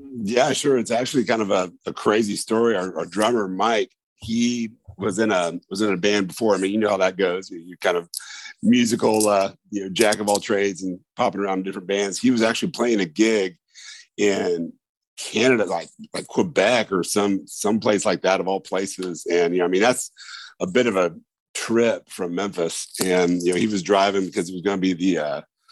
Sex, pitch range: male, 90-110 Hz